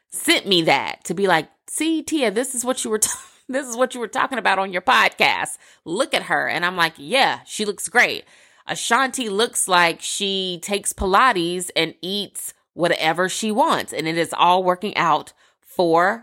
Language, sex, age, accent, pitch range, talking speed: English, female, 20-39, American, 160-225 Hz, 190 wpm